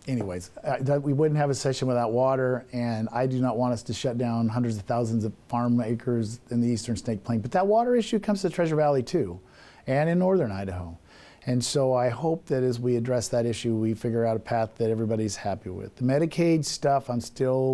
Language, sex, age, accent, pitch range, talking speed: English, male, 50-69, American, 115-135 Hz, 225 wpm